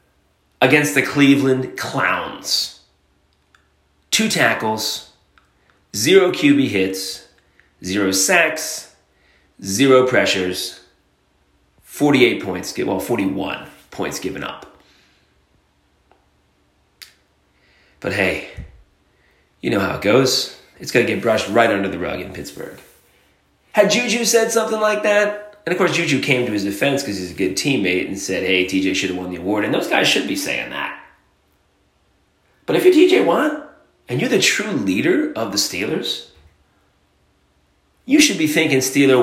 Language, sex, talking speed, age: English, male, 140 wpm, 30-49